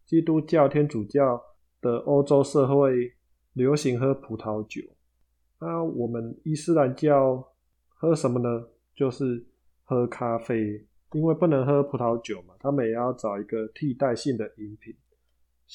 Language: Chinese